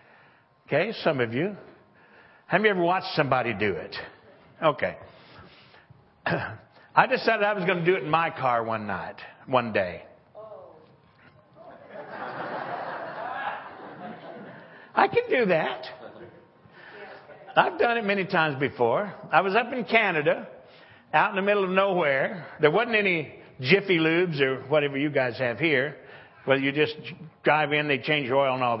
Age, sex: 60-79, male